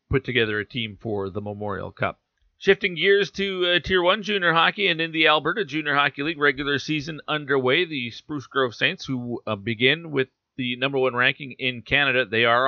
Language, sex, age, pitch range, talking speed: English, male, 40-59, 115-145 Hz, 200 wpm